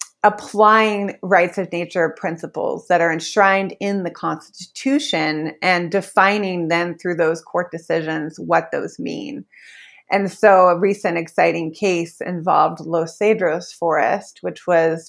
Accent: American